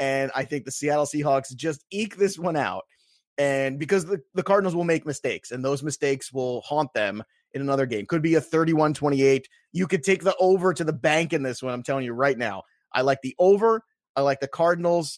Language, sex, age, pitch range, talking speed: English, male, 30-49, 130-180 Hz, 225 wpm